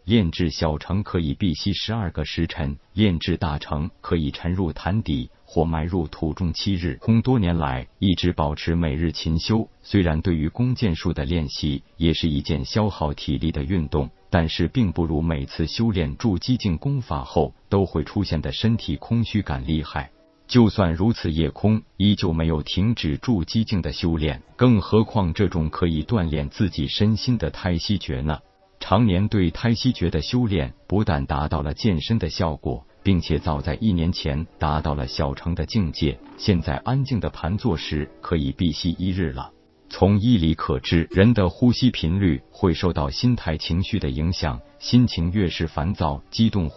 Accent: native